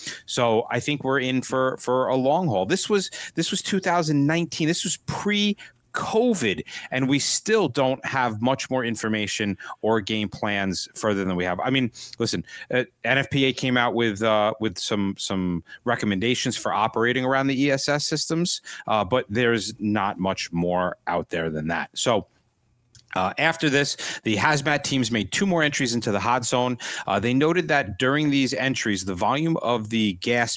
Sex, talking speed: male, 175 wpm